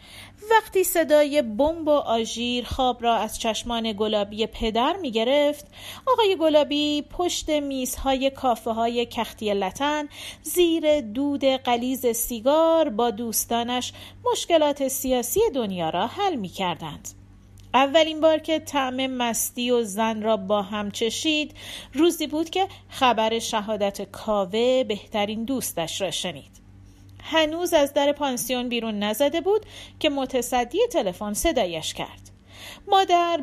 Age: 40-59